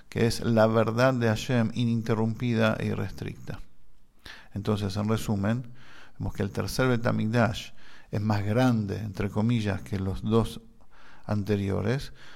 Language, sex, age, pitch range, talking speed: English, male, 50-69, 105-120 Hz, 125 wpm